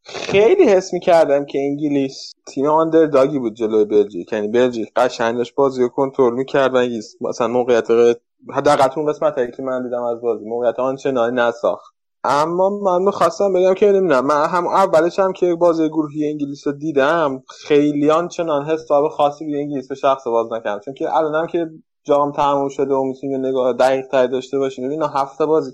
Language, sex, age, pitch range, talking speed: Persian, male, 20-39, 120-145 Hz, 175 wpm